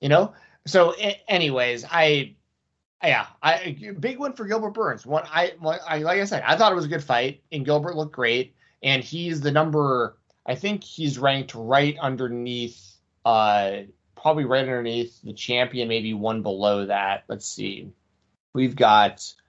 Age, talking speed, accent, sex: 20-39, 165 wpm, American, male